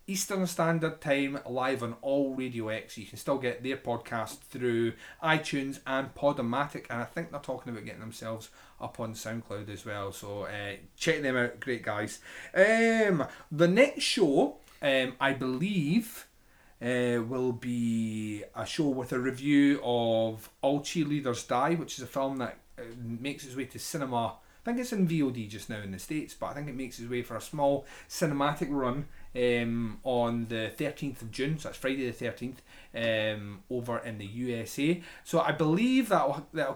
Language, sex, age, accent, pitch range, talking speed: English, male, 30-49, British, 115-145 Hz, 180 wpm